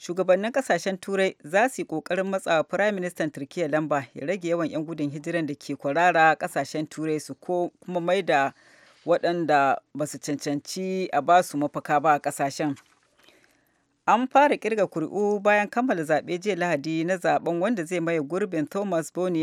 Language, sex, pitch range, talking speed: English, female, 150-185 Hz, 135 wpm